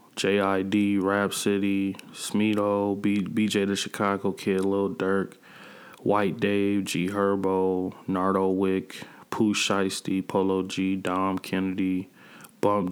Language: English